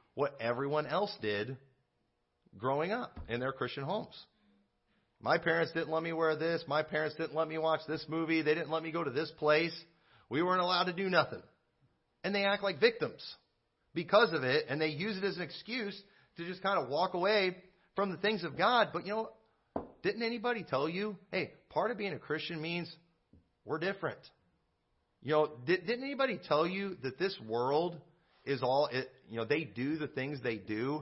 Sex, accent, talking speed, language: male, American, 195 wpm, English